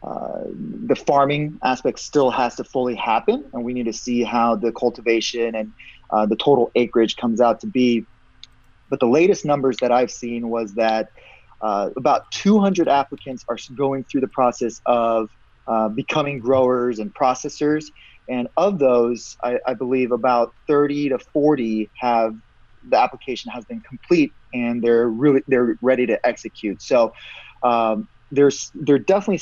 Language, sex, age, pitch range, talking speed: English, male, 30-49, 115-145 Hz, 160 wpm